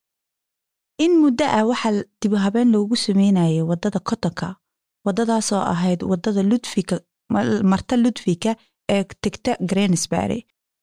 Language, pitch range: Swahili, 180-230 Hz